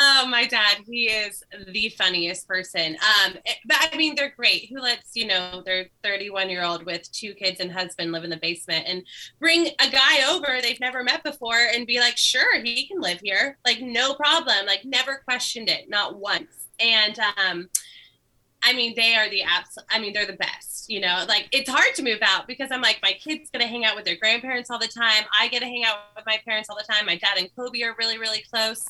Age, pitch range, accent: 20-39, 200-255 Hz, American